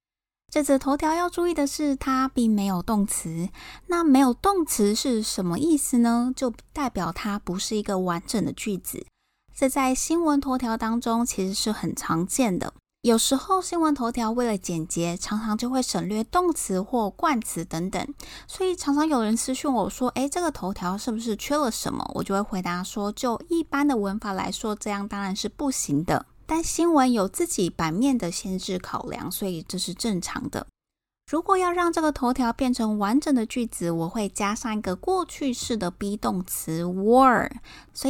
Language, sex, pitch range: Chinese, female, 195-275 Hz